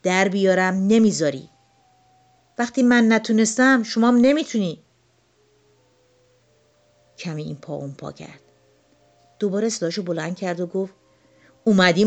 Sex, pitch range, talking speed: female, 155-215 Hz, 105 wpm